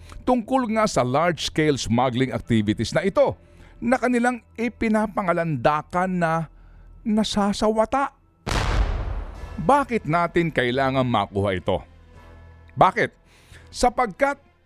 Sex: male